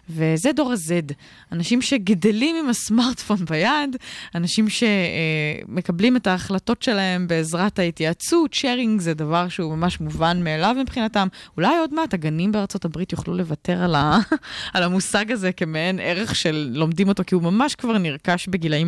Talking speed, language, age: 145 wpm, Hebrew, 20-39